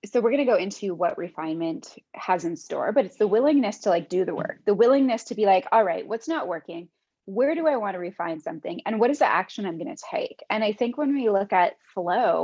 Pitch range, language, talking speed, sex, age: 185-255 Hz, English, 260 wpm, female, 20-39